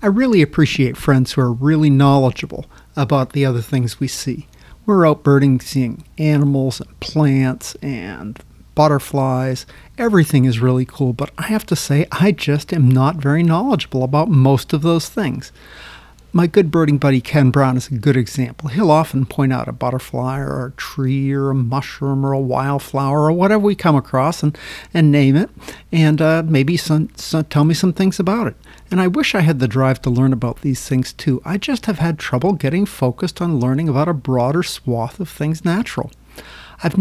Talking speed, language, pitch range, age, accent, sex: 190 wpm, English, 130-165 Hz, 50-69, American, male